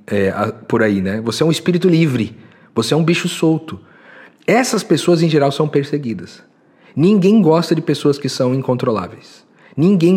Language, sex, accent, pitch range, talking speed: Portuguese, male, Brazilian, 135-200 Hz, 165 wpm